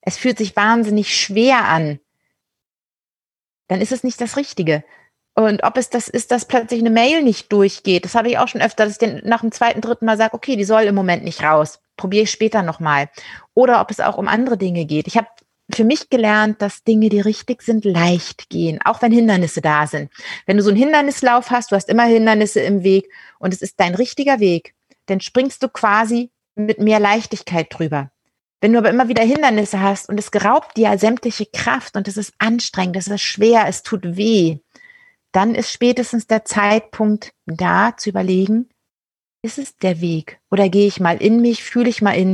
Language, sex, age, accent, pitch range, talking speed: German, female, 30-49, German, 190-230 Hz, 205 wpm